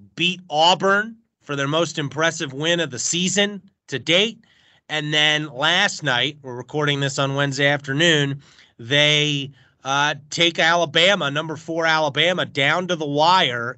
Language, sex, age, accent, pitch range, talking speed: English, male, 30-49, American, 140-175 Hz, 145 wpm